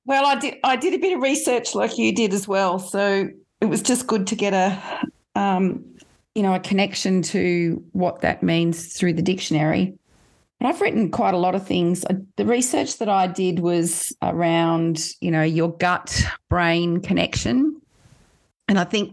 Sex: female